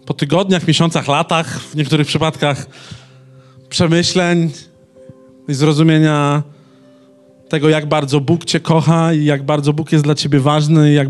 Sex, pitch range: male, 140-170 Hz